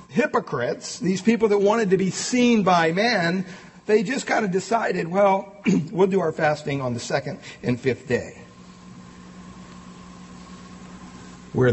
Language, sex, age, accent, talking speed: English, male, 50-69, American, 140 wpm